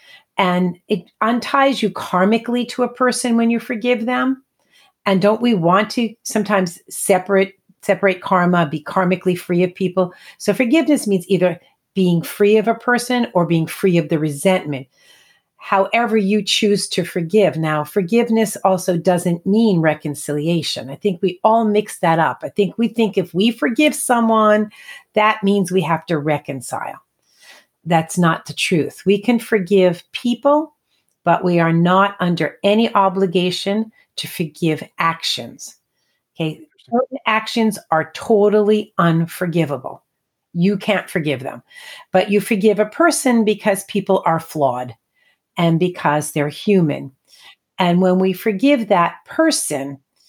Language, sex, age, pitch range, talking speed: English, female, 40-59, 170-220 Hz, 145 wpm